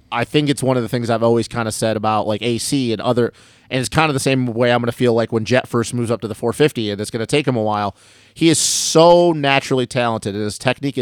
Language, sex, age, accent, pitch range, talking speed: English, male, 30-49, American, 115-135 Hz, 290 wpm